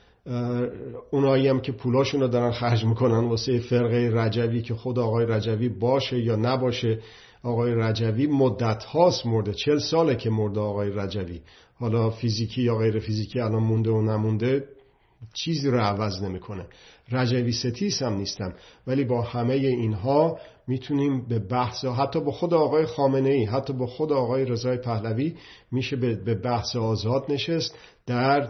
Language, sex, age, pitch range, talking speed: Persian, male, 50-69, 115-140 Hz, 145 wpm